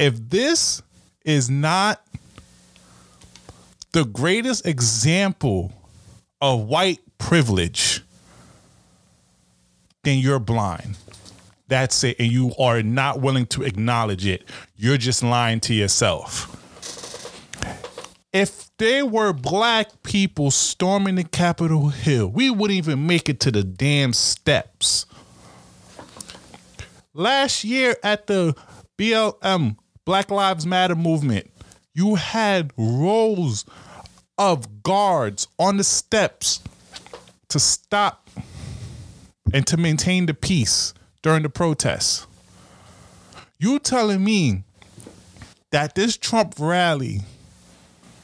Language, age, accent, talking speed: English, 30-49, American, 100 wpm